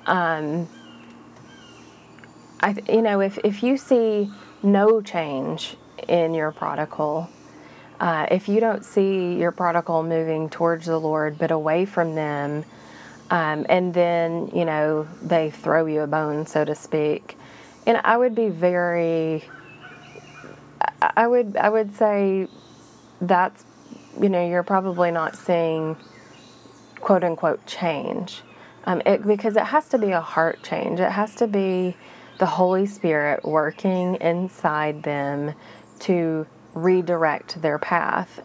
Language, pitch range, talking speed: English, 155-190 Hz, 135 wpm